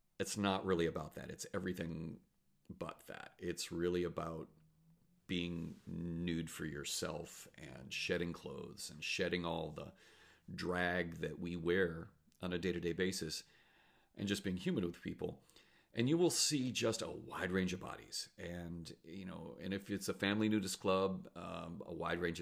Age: 40-59